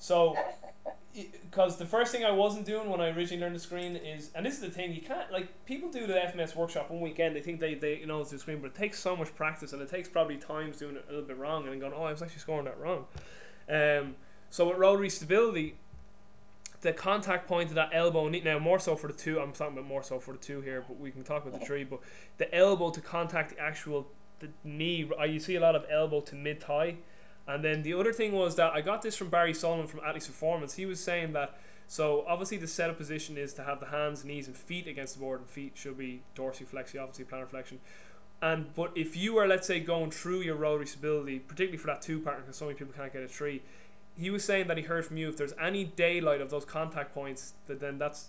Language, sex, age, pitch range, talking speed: English, male, 20-39, 140-170 Hz, 255 wpm